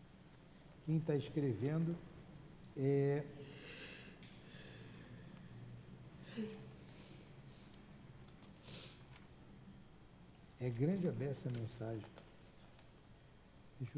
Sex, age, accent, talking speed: male, 60-79, Brazilian, 45 wpm